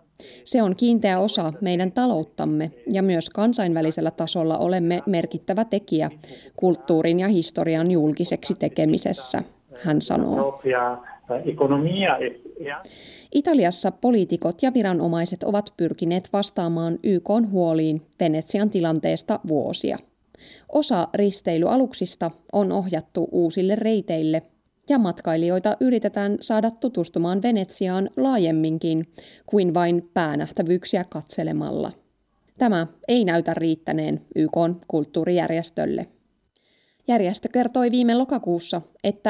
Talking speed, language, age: 90 wpm, Finnish, 20-39